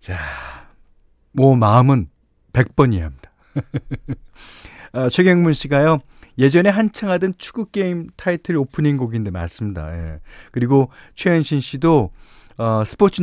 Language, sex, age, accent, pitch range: Korean, male, 40-59, native, 95-155 Hz